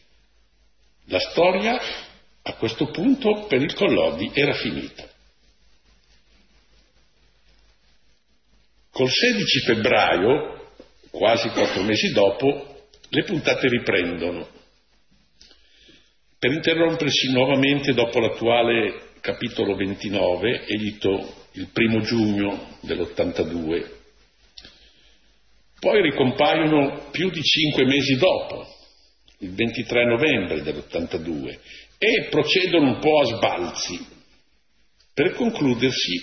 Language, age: Italian, 60-79